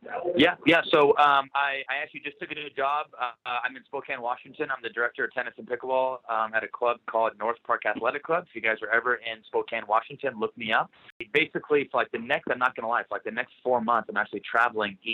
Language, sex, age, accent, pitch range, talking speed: English, male, 30-49, American, 105-135 Hz, 255 wpm